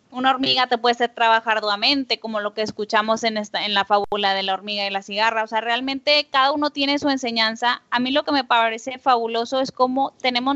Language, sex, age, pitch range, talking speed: Spanish, female, 10-29, 220-255 Hz, 225 wpm